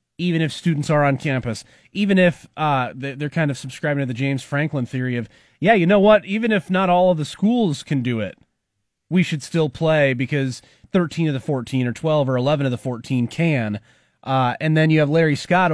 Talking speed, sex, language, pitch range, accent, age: 215 wpm, male, English, 120-155 Hz, American, 30-49